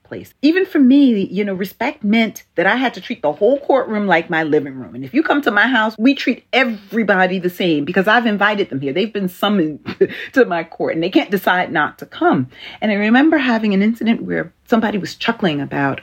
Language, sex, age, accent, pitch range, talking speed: English, female, 40-59, American, 175-255 Hz, 230 wpm